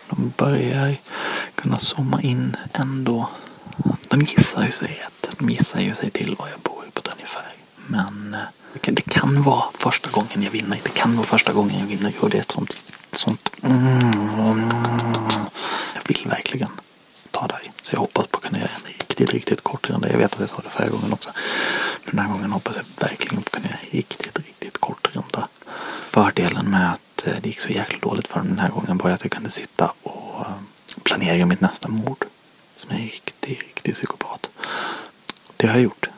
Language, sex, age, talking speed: Swedish, male, 30-49, 200 wpm